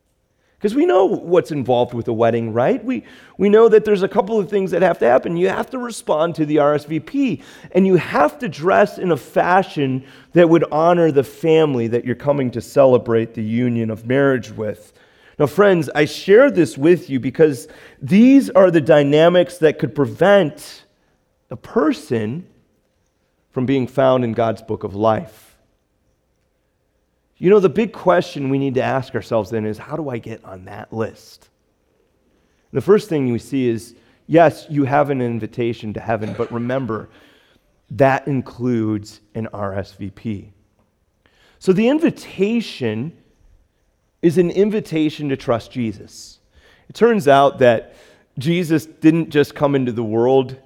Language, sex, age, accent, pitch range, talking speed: English, male, 30-49, American, 115-170 Hz, 160 wpm